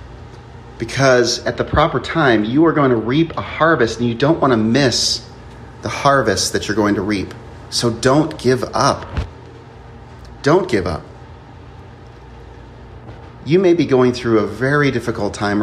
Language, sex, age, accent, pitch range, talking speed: English, male, 30-49, American, 110-125 Hz, 155 wpm